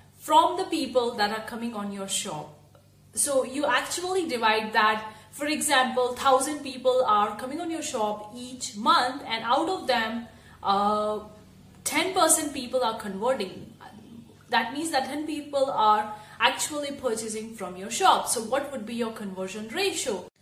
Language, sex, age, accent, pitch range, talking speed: English, female, 30-49, Indian, 215-280 Hz, 155 wpm